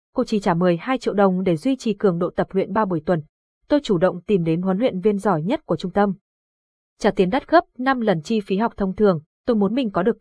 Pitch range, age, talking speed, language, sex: 185-240 Hz, 20-39, 265 wpm, Vietnamese, female